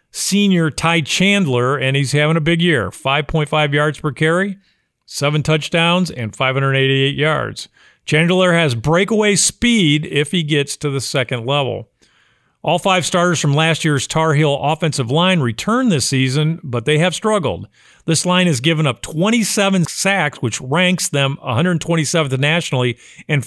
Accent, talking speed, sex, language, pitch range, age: American, 150 wpm, male, English, 140-175 Hz, 40-59